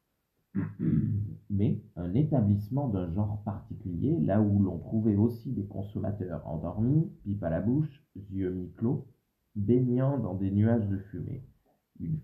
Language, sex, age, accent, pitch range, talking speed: French, male, 40-59, French, 95-130 Hz, 130 wpm